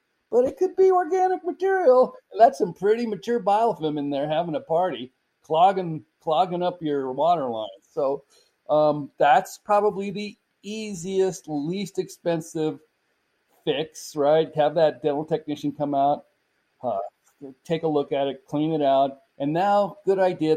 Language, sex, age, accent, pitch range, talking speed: English, male, 40-59, American, 135-185 Hz, 150 wpm